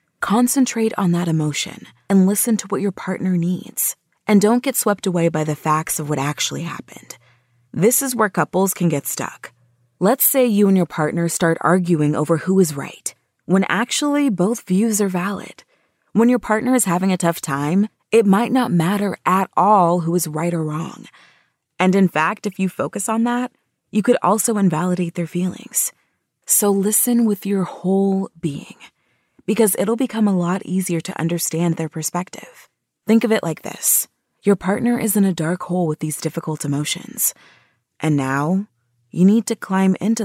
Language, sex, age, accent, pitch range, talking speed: English, female, 30-49, American, 165-210 Hz, 180 wpm